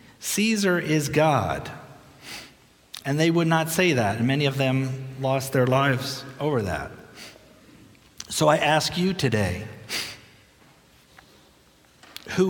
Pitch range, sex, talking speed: 120-145 Hz, male, 115 wpm